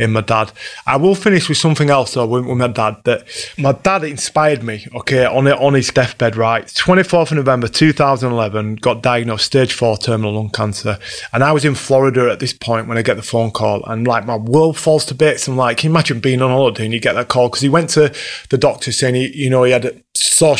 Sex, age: male, 30-49